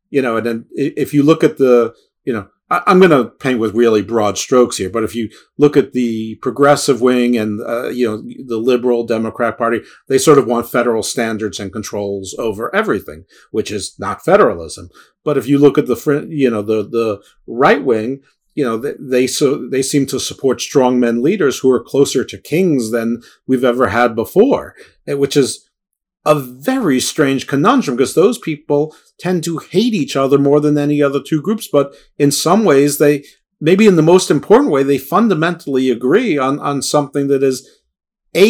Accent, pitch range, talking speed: American, 115-145 Hz, 195 wpm